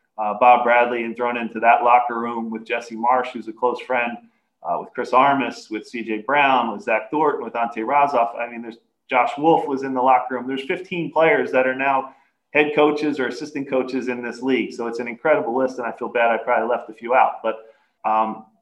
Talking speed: 225 wpm